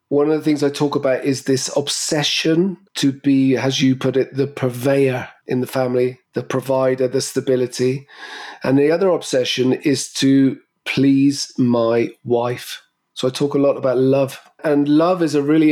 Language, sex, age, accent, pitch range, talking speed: English, male, 40-59, British, 130-155 Hz, 175 wpm